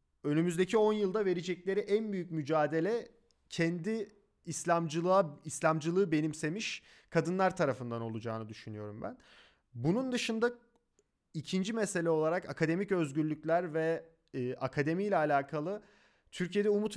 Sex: male